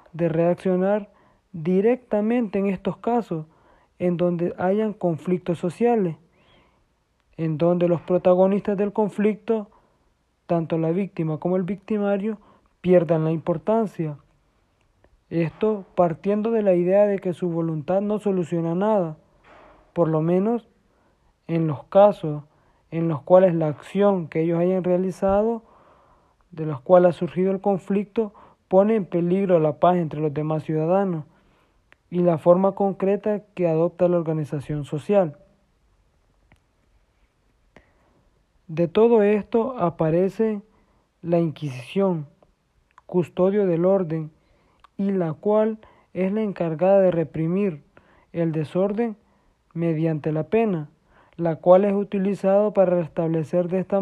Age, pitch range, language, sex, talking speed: 40-59, 165-200 Hz, Spanish, male, 120 wpm